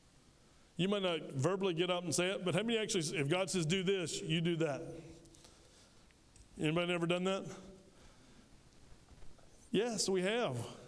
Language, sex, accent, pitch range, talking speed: English, male, American, 155-190 Hz, 155 wpm